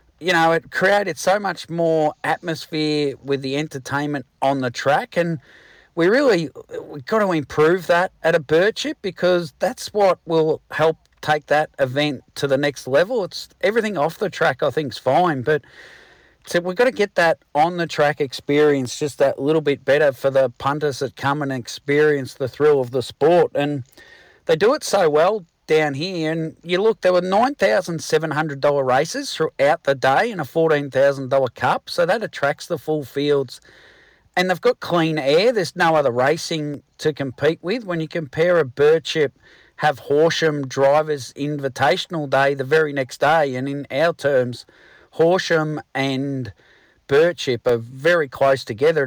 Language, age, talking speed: English, 40-59, 175 wpm